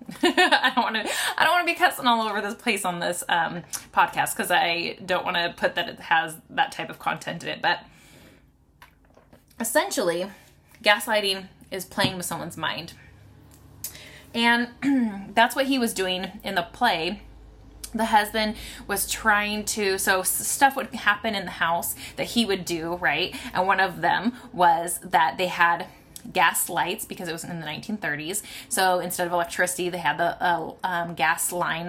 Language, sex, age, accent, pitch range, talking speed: English, female, 20-39, American, 180-230 Hz, 175 wpm